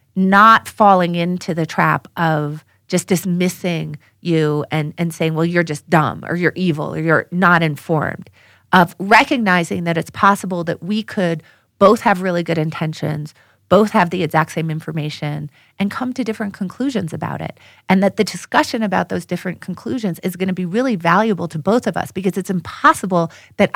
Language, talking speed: English, 180 wpm